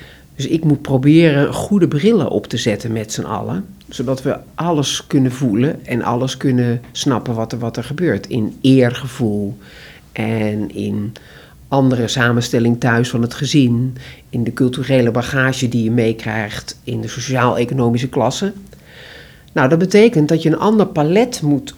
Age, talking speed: 50-69, 155 wpm